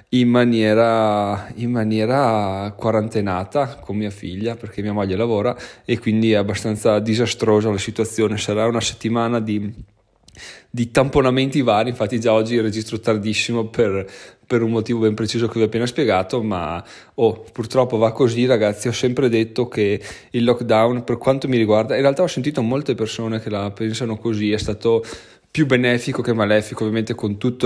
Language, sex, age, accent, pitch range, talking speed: Italian, male, 20-39, native, 105-120 Hz, 165 wpm